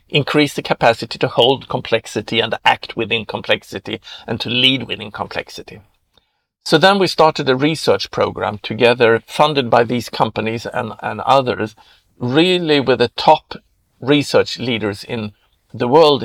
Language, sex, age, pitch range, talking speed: English, male, 50-69, 115-145 Hz, 145 wpm